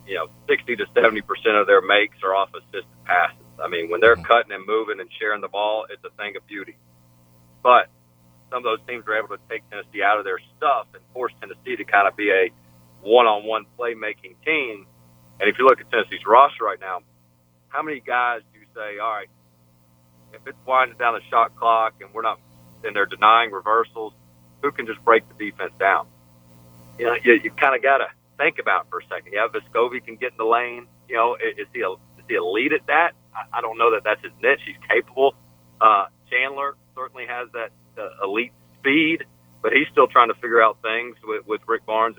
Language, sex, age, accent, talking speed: English, male, 40-59, American, 210 wpm